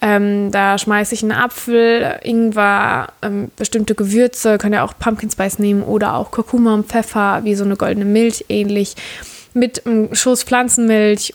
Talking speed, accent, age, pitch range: 165 wpm, German, 20-39, 200-230 Hz